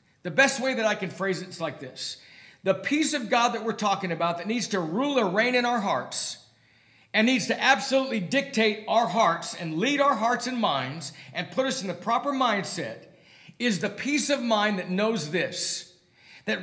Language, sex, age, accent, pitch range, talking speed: English, male, 50-69, American, 160-235 Hz, 205 wpm